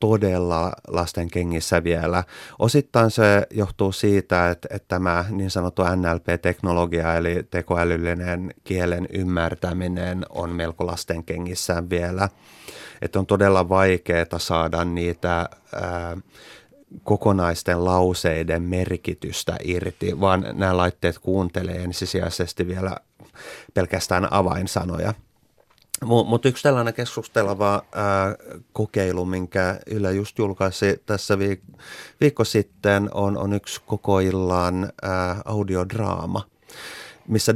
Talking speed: 95 wpm